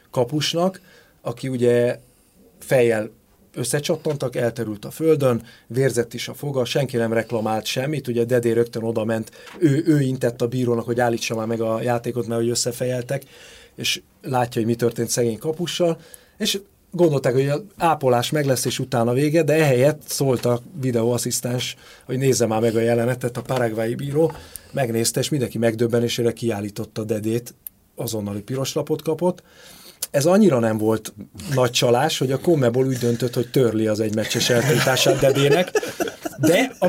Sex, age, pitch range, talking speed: male, 30-49, 115-145 Hz, 155 wpm